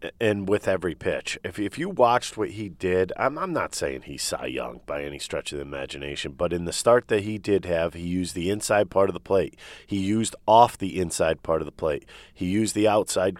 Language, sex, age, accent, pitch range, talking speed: English, male, 40-59, American, 90-110 Hz, 235 wpm